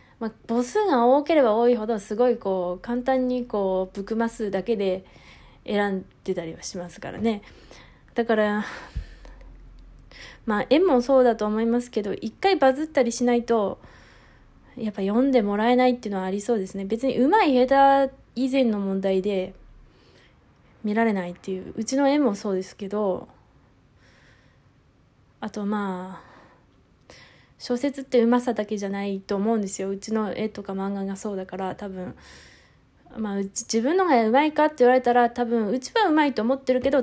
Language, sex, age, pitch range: Japanese, female, 20-39, 205-255 Hz